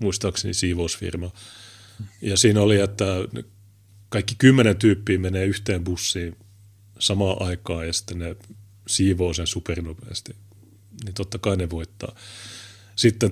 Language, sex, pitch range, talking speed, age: Finnish, male, 95-105 Hz, 115 wpm, 30-49